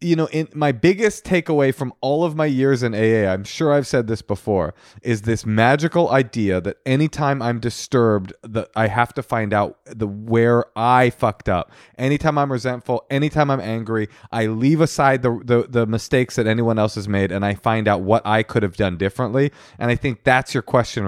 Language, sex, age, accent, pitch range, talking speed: English, male, 30-49, American, 110-140 Hz, 205 wpm